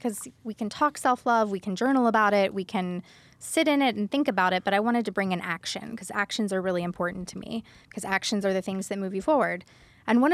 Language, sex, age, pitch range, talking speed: English, female, 20-39, 180-220 Hz, 255 wpm